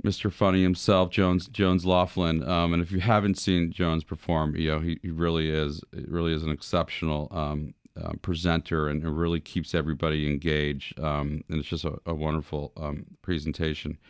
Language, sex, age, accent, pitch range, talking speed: English, male, 40-59, American, 80-95 Hz, 180 wpm